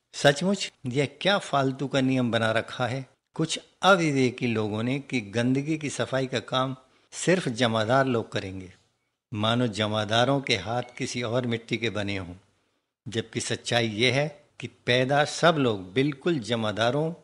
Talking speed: 85 wpm